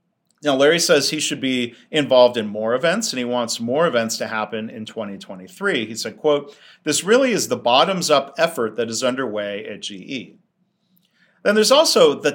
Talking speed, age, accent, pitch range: 180 wpm, 40-59, American, 125-185 Hz